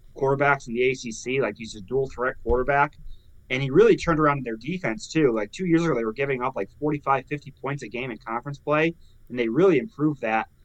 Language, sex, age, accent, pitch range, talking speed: English, male, 20-39, American, 115-140 Hz, 230 wpm